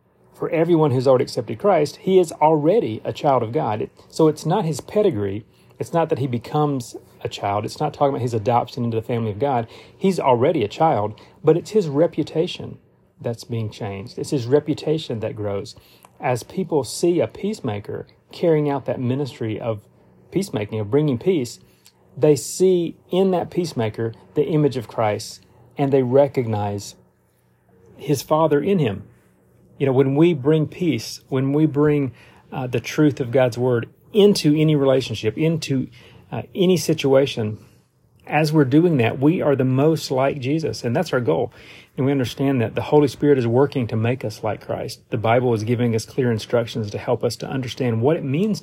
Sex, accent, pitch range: male, American, 115-155 Hz